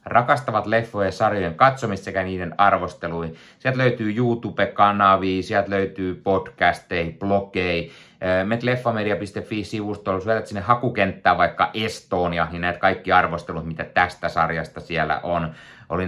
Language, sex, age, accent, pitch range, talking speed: Finnish, male, 30-49, native, 85-105 Hz, 125 wpm